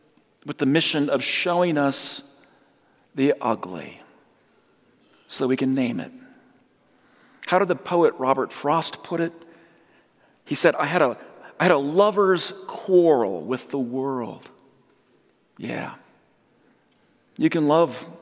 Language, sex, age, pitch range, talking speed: English, male, 50-69, 145-185 Hz, 130 wpm